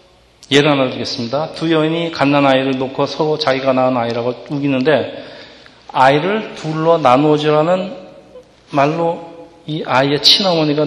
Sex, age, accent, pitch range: male, 40-59, native, 135-170 Hz